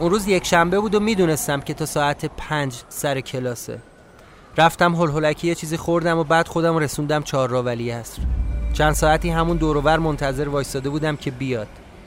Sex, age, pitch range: male, 30-49, 130-170 Hz